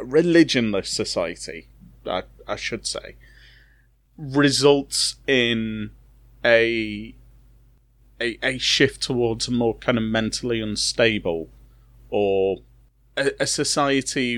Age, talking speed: 30-49, 95 wpm